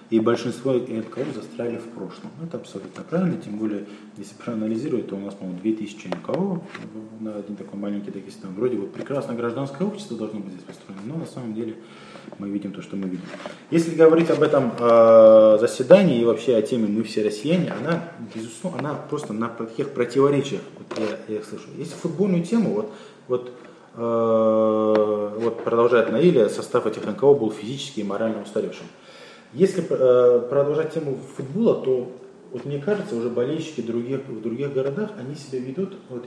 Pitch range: 110-175 Hz